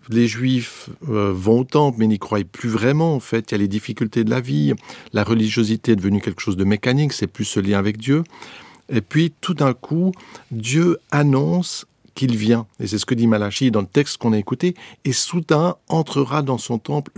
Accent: French